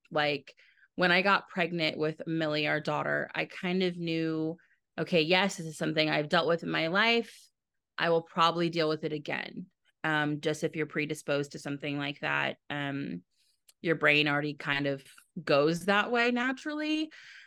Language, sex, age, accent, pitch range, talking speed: English, female, 30-49, American, 150-185 Hz, 170 wpm